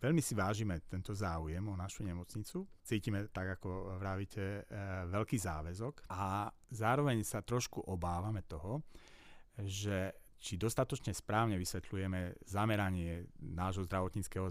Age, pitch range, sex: 40-59, 85-105 Hz, male